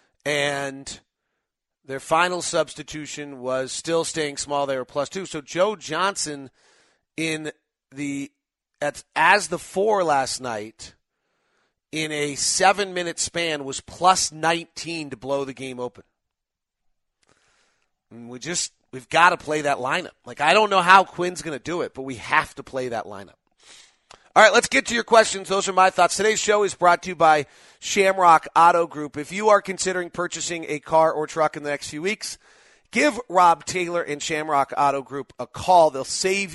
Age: 40-59